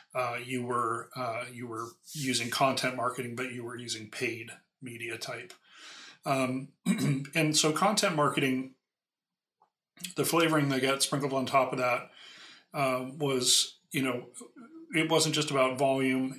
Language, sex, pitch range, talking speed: English, male, 125-145 Hz, 145 wpm